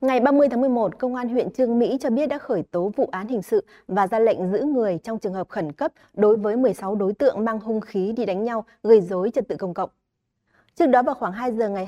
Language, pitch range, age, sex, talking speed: Vietnamese, 195-250 Hz, 20-39, female, 265 wpm